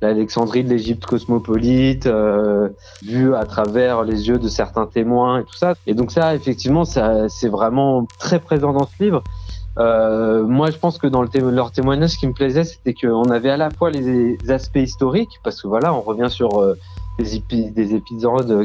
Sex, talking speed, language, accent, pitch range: male, 200 wpm, French, French, 110-135 Hz